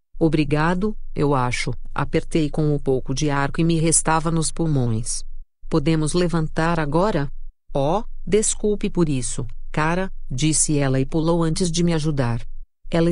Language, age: Portuguese, 50-69